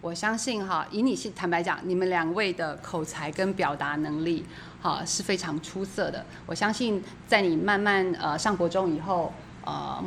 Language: Chinese